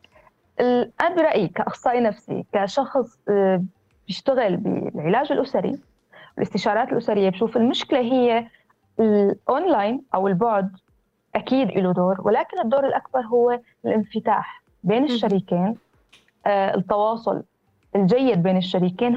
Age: 20-39